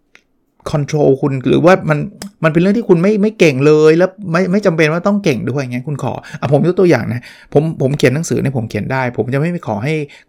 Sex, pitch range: male, 120-155 Hz